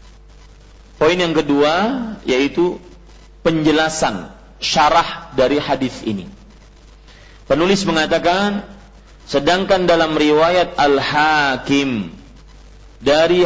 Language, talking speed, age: Malay, 70 wpm, 40-59